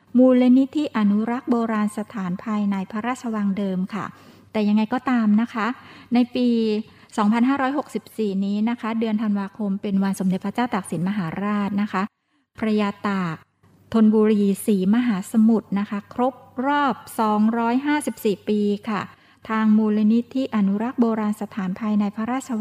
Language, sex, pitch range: Thai, female, 200-235 Hz